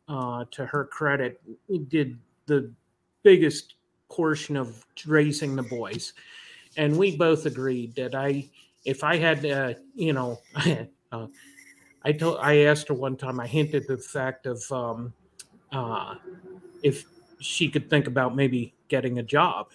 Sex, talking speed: male, 145 wpm